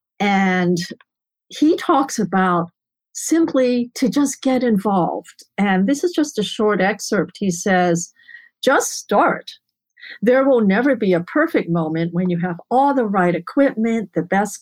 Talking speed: 150 wpm